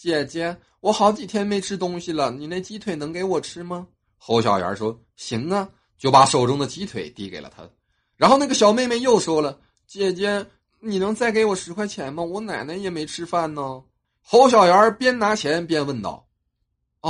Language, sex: Chinese, male